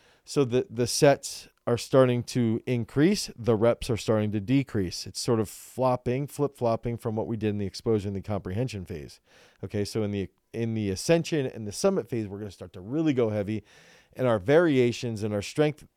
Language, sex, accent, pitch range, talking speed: English, male, American, 105-130 Hz, 205 wpm